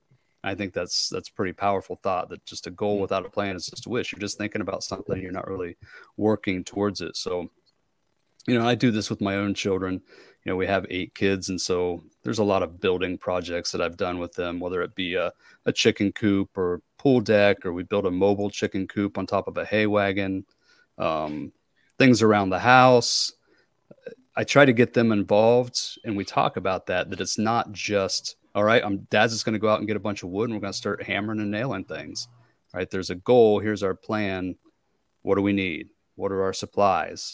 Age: 30-49